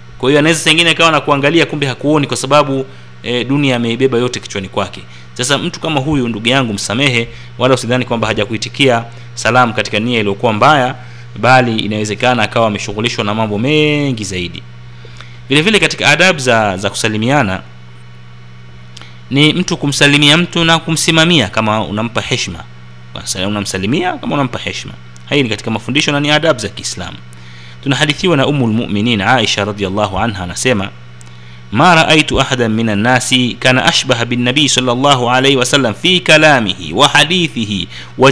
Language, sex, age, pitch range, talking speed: Swahili, male, 30-49, 100-140 Hz, 150 wpm